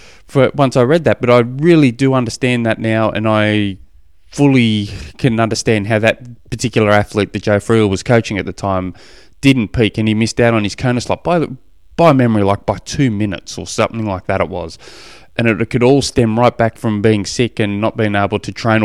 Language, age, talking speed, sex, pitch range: English, 20-39, 215 wpm, male, 105-135 Hz